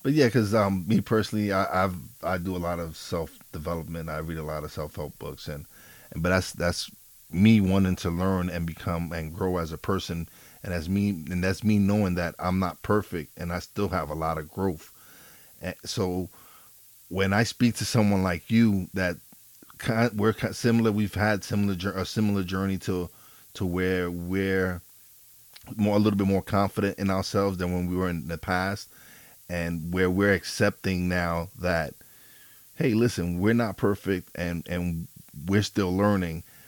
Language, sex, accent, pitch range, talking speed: English, male, American, 85-105 Hz, 190 wpm